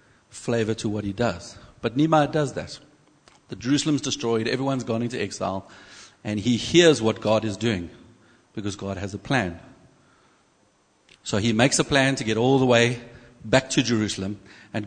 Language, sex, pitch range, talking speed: English, male, 105-125 Hz, 170 wpm